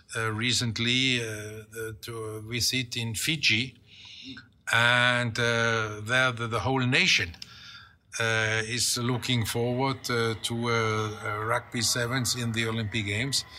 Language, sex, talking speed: English, male, 120 wpm